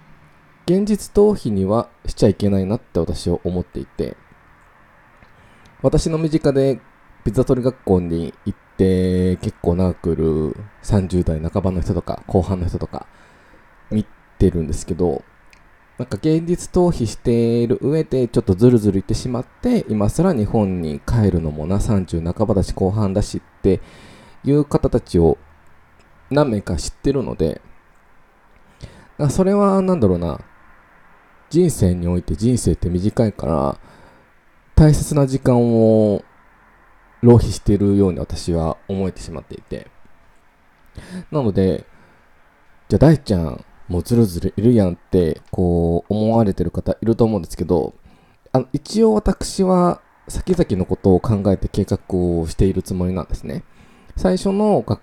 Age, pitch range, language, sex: 20-39, 90-120 Hz, Japanese, male